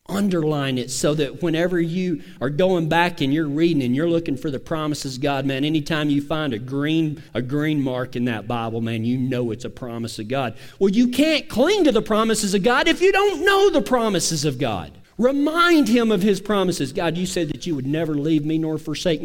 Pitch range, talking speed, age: 135-185 Hz, 225 wpm, 40-59